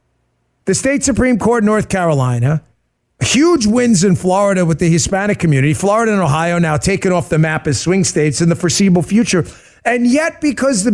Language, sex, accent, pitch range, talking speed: English, male, American, 180-280 Hz, 180 wpm